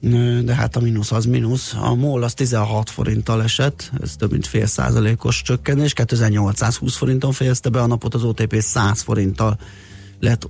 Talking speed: 165 wpm